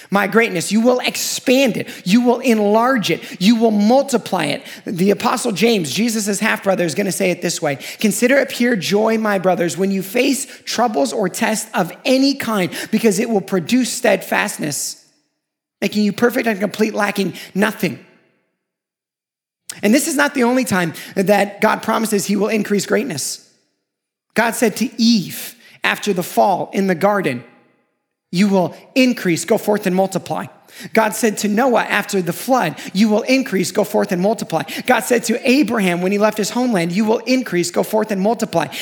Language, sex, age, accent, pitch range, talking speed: English, male, 30-49, American, 195-235 Hz, 175 wpm